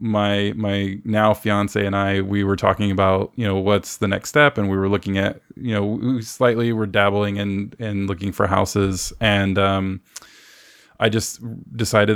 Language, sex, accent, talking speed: English, male, American, 185 wpm